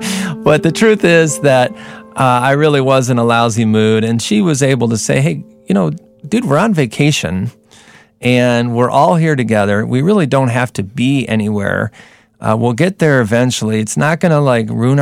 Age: 40-59